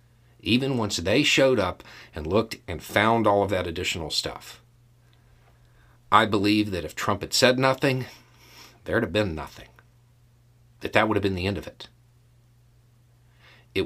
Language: English